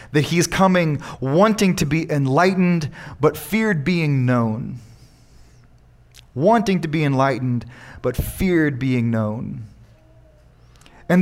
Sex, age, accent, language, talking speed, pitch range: male, 20-39, American, English, 105 wpm, 125-170 Hz